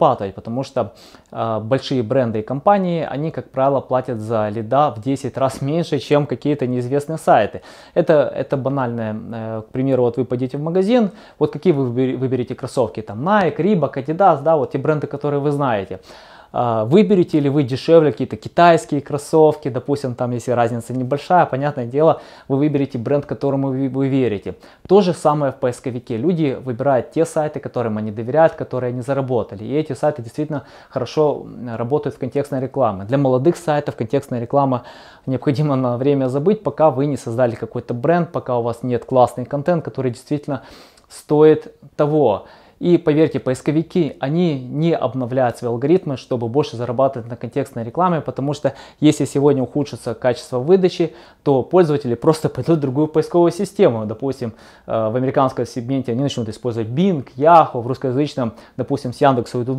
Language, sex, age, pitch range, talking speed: Russian, male, 20-39, 125-150 Hz, 165 wpm